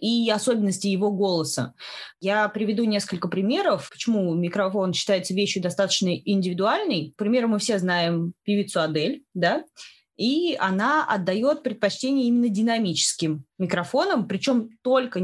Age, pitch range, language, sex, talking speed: 20-39, 175-220 Hz, Russian, female, 120 wpm